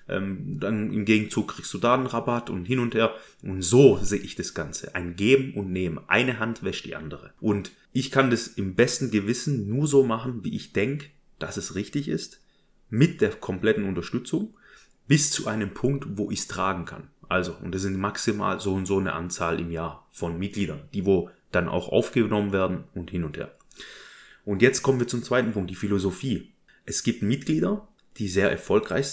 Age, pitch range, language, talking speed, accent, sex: 30-49, 95-125 Hz, German, 195 wpm, German, male